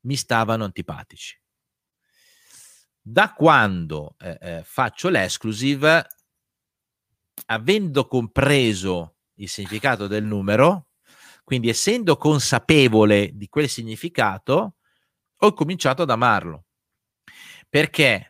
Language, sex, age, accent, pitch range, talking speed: Italian, male, 40-59, native, 100-140 Hz, 85 wpm